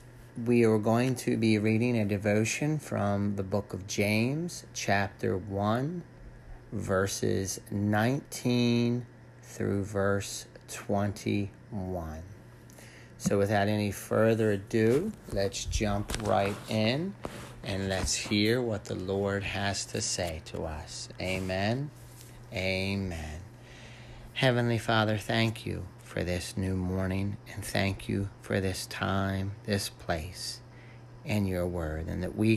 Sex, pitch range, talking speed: male, 100-120 Hz, 120 wpm